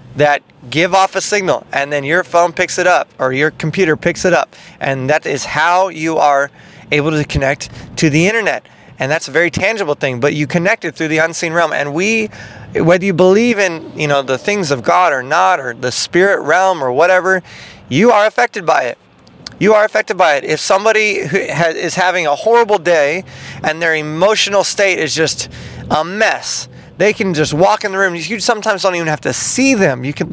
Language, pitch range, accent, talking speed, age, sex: English, 140-185 Hz, American, 210 wpm, 20-39, male